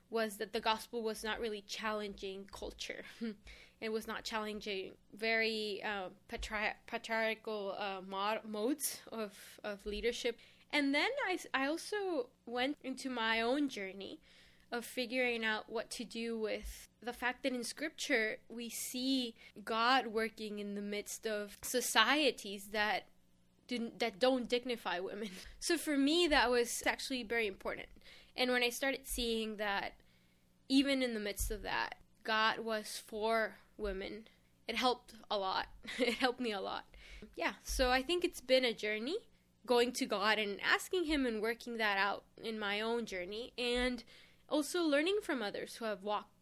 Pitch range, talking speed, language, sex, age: 215-255 Hz, 160 wpm, English, female, 10-29